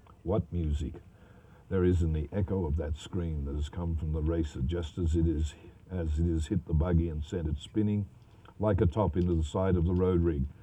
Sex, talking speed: male, 225 wpm